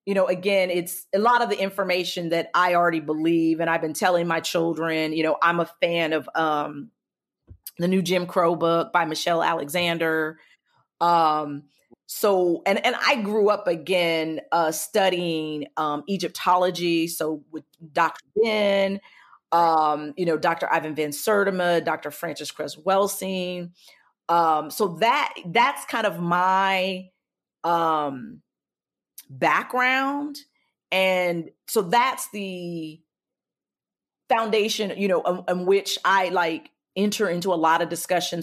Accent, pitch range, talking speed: American, 165-190 Hz, 135 wpm